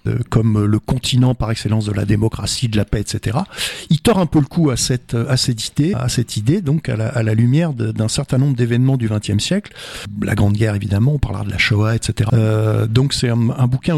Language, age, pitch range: French, 50-69, 110-135 Hz